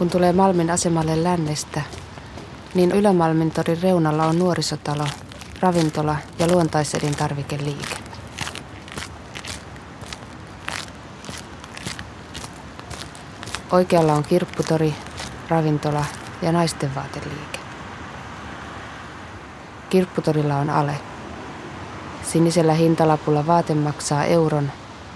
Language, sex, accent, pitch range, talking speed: Finnish, female, native, 140-170 Hz, 65 wpm